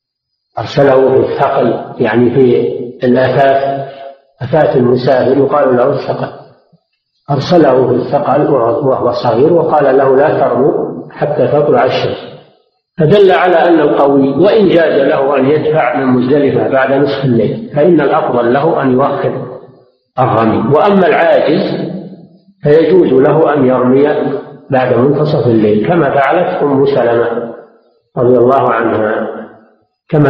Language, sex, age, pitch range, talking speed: Arabic, male, 50-69, 130-165 Hz, 120 wpm